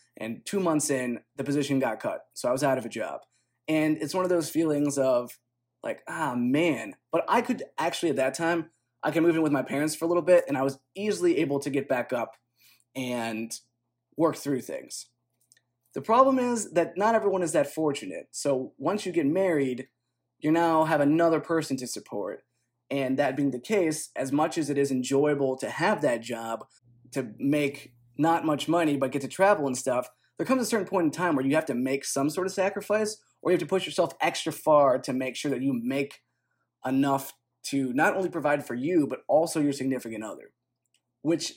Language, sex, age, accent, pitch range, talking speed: English, male, 20-39, American, 130-165 Hz, 210 wpm